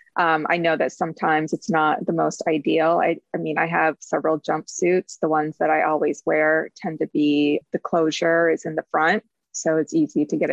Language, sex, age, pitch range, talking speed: English, female, 20-39, 160-195 Hz, 210 wpm